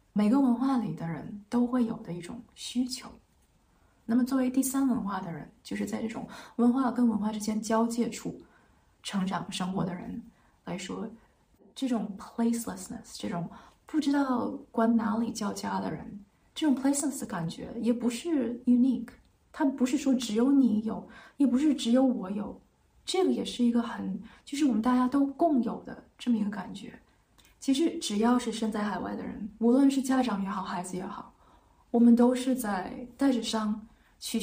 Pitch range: 205-250 Hz